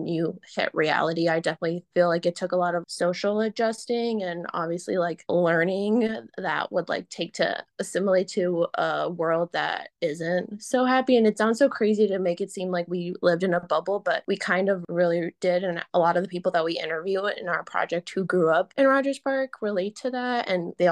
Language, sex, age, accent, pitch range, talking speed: English, female, 20-39, American, 175-205 Hz, 215 wpm